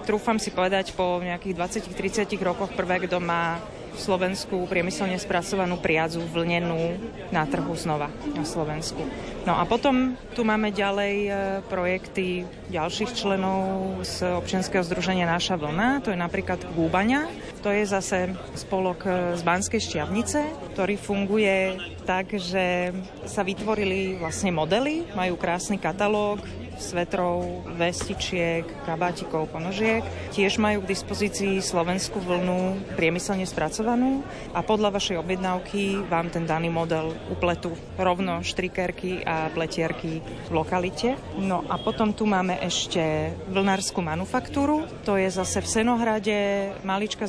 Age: 30-49